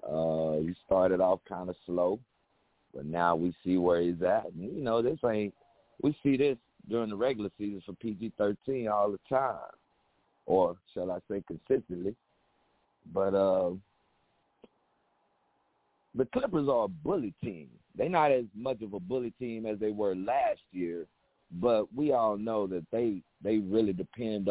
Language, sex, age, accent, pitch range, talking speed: English, male, 50-69, American, 85-110 Hz, 160 wpm